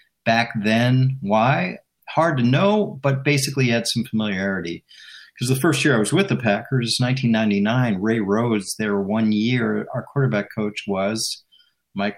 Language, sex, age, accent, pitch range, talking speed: English, male, 50-69, American, 100-120 Hz, 155 wpm